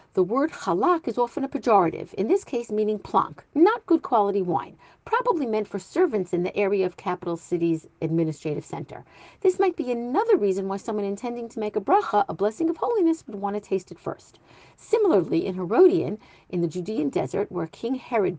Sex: female